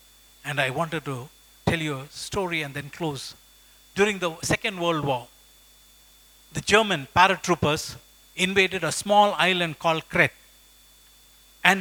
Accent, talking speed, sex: Indian, 130 wpm, male